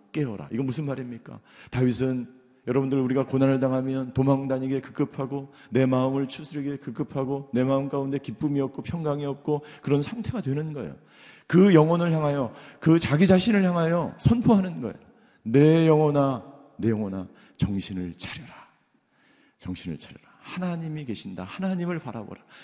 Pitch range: 120-145 Hz